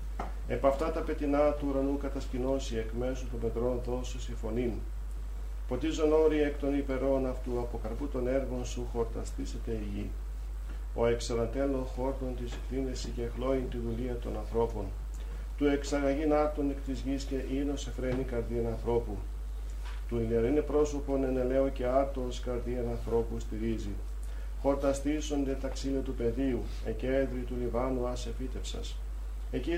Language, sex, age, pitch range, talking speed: Greek, male, 50-69, 110-135 Hz, 130 wpm